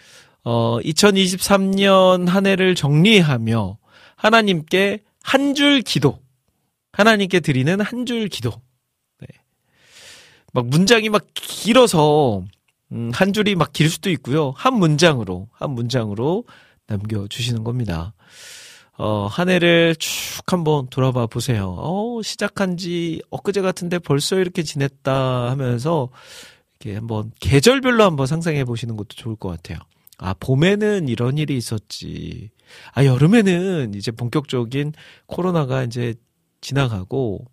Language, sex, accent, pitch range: Korean, male, native, 120-175 Hz